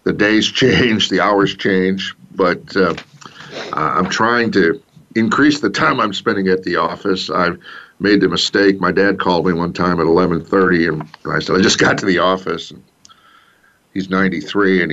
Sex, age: male, 50-69